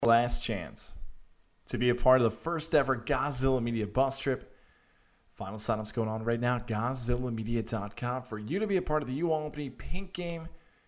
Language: English